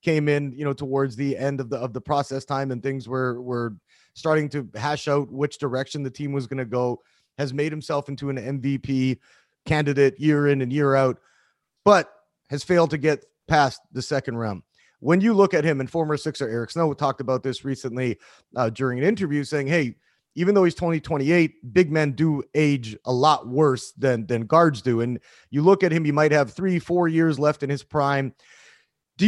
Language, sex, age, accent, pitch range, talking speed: English, male, 30-49, American, 135-170 Hz, 205 wpm